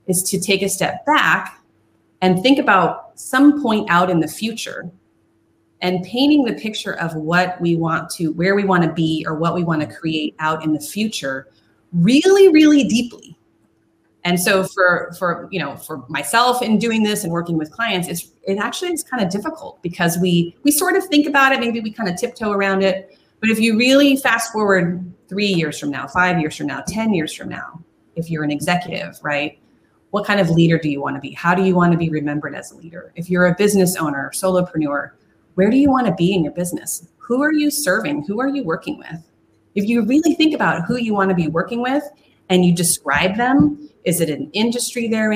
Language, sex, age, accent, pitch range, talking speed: English, female, 30-49, American, 165-220 Hz, 215 wpm